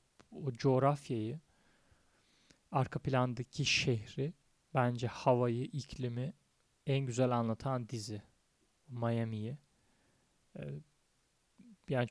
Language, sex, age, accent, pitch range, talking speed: Turkish, male, 30-49, native, 115-135 Hz, 75 wpm